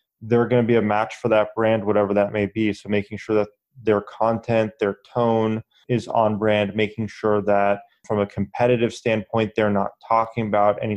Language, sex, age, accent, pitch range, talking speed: English, male, 20-39, American, 100-110 Hz, 195 wpm